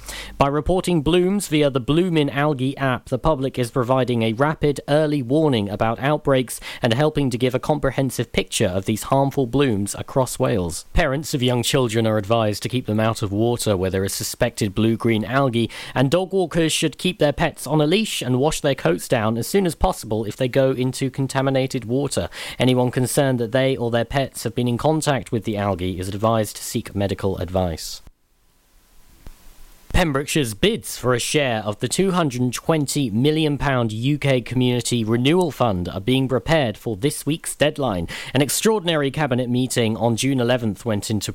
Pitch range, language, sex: 115-145 Hz, English, male